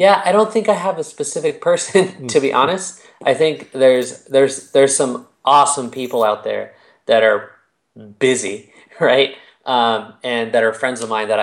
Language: English